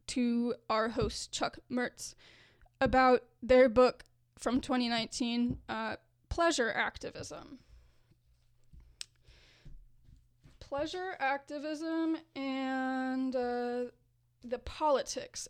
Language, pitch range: English, 215-260 Hz